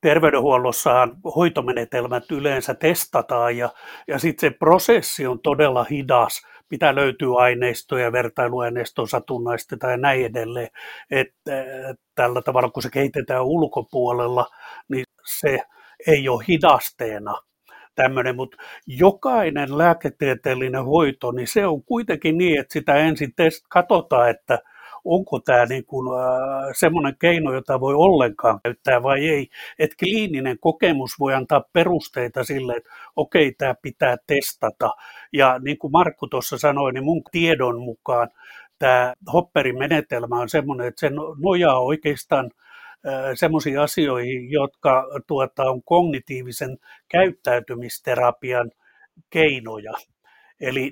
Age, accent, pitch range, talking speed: 60-79, native, 125-155 Hz, 115 wpm